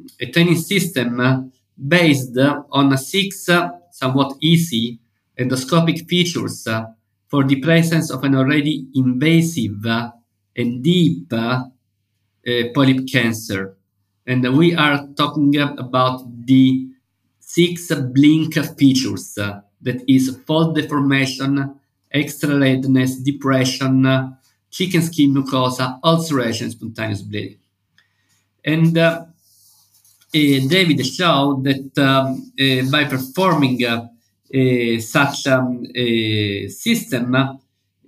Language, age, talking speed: English, 50-69, 100 wpm